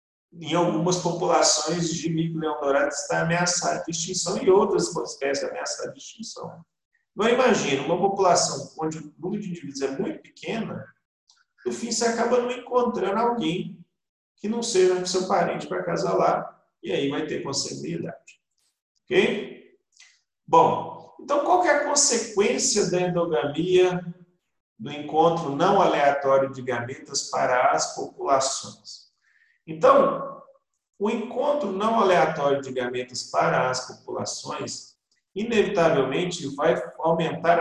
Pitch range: 140-205 Hz